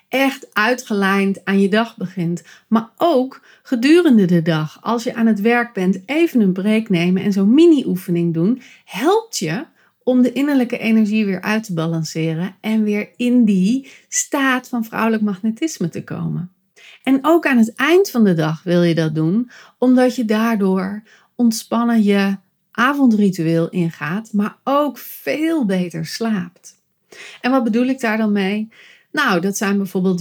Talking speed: 160 wpm